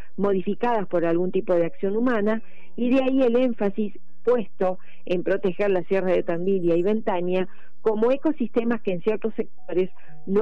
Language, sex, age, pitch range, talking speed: Spanish, female, 40-59, 180-220 Hz, 160 wpm